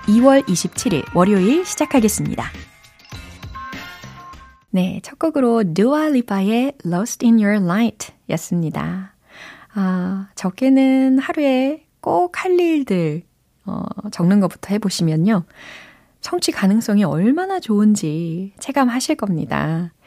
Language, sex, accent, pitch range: Korean, female, native, 175-260 Hz